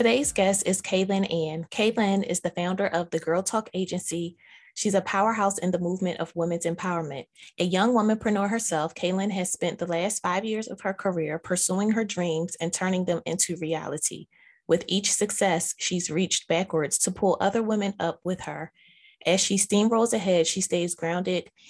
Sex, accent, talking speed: female, American, 180 wpm